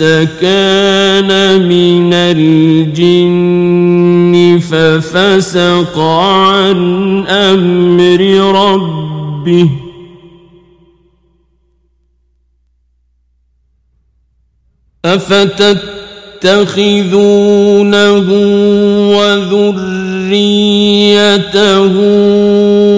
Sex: male